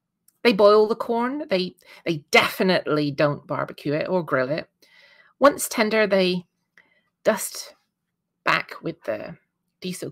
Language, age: English, 30-49